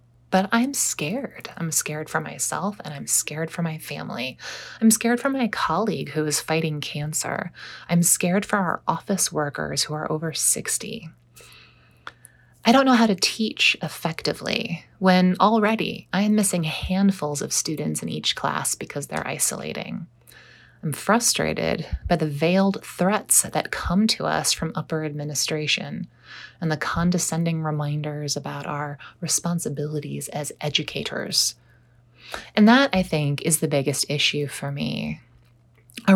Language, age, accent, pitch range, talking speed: English, 20-39, American, 145-195 Hz, 145 wpm